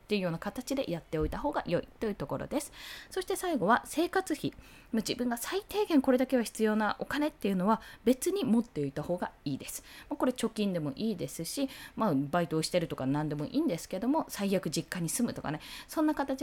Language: Japanese